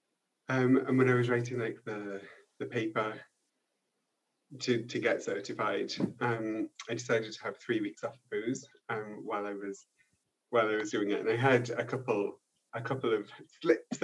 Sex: male